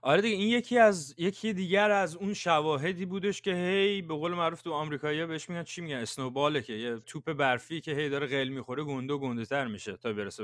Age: 30-49